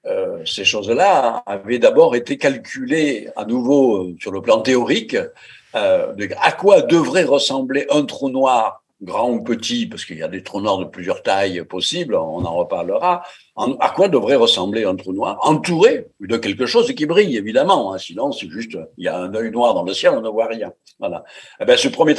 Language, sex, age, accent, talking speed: French, male, 60-79, French, 205 wpm